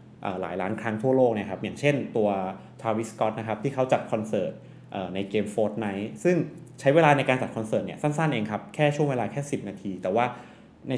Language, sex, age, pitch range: Thai, male, 20-39, 100-130 Hz